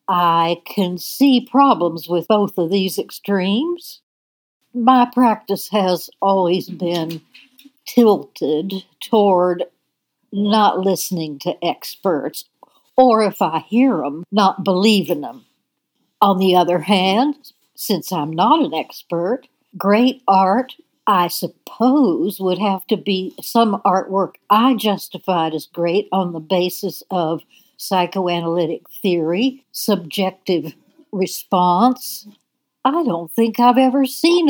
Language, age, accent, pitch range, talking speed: English, 60-79, American, 185-250 Hz, 115 wpm